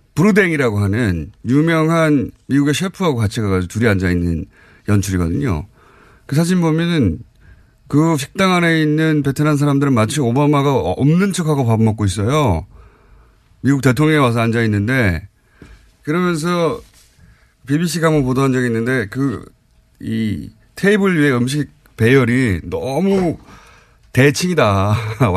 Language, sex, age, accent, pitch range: Korean, male, 30-49, native, 110-170 Hz